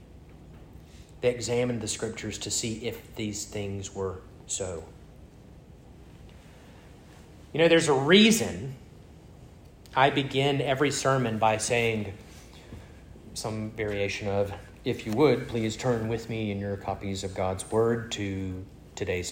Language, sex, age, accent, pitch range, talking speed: English, male, 30-49, American, 95-145 Hz, 120 wpm